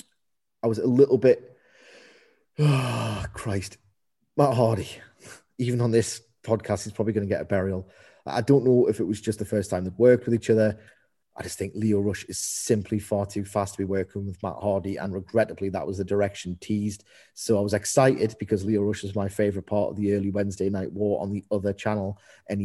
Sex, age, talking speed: male, 30-49, 210 wpm